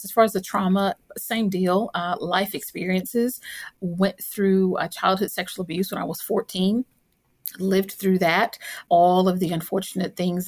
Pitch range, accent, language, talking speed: 180-200 Hz, American, English, 160 wpm